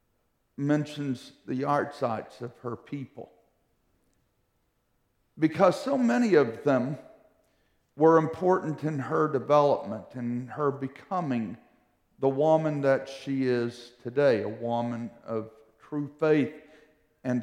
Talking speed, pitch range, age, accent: 110 wpm, 110-150 Hz, 50-69, American